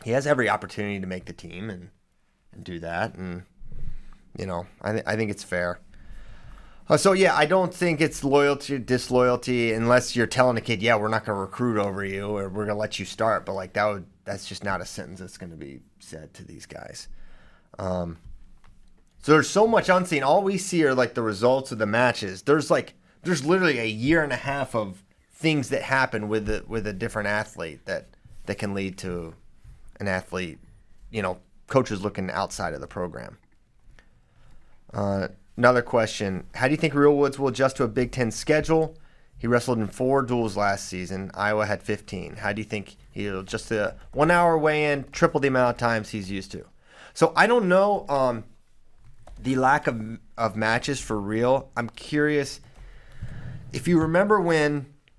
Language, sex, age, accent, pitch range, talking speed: English, male, 30-49, American, 100-140 Hz, 195 wpm